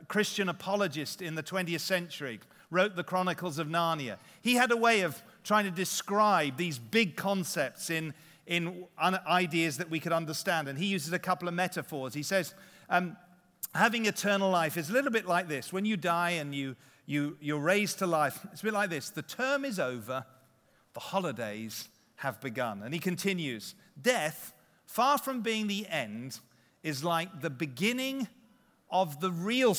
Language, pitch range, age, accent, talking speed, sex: English, 150-195 Hz, 40-59, British, 175 wpm, male